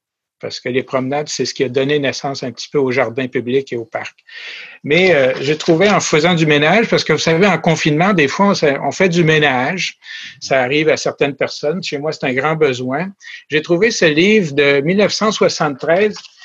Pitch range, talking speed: 135-185 Hz, 210 wpm